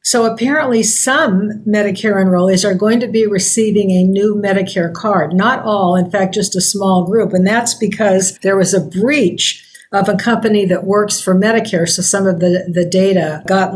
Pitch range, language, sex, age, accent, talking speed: 180-210 Hz, English, female, 50-69, American, 190 wpm